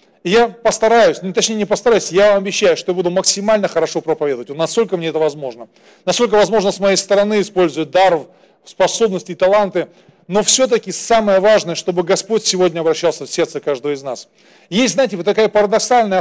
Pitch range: 165-210 Hz